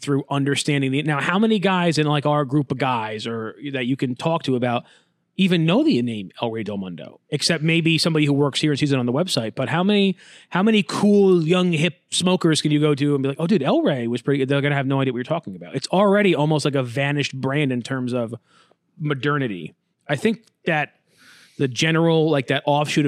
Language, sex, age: English, male, 30-49